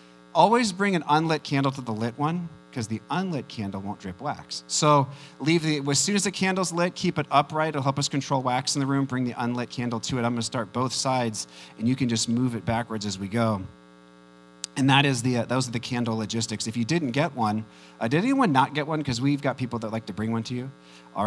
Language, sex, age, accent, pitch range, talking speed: English, male, 40-59, American, 95-140 Hz, 255 wpm